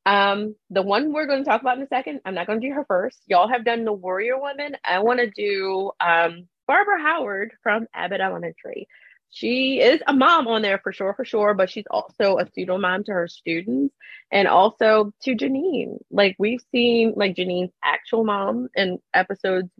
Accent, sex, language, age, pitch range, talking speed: American, female, English, 20-39, 175-225 Hz, 200 wpm